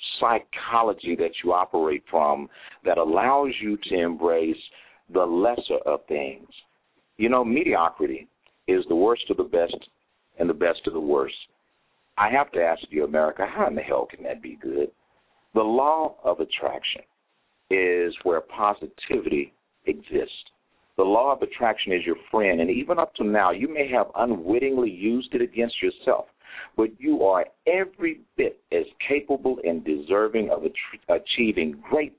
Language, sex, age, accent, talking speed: English, male, 50-69, American, 155 wpm